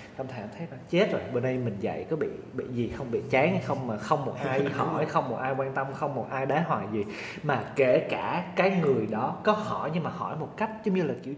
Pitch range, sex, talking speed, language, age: 115-180 Hz, male, 270 wpm, Vietnamese, 20-39